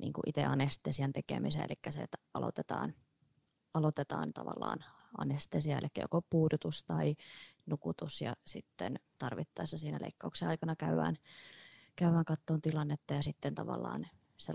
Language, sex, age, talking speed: Finnish, female, 20-39, 125 wpm